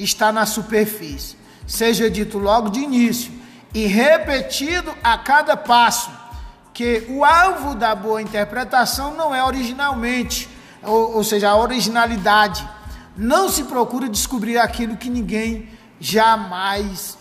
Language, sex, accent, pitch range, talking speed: Portuguese, male, Brazilian, 215-260 Hz, 120 wpm